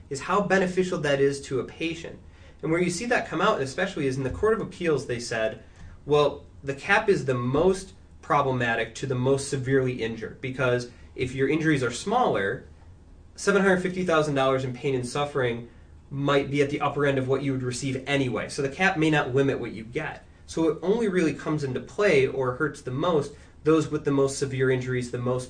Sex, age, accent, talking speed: male, 20-39, American, 205 wpm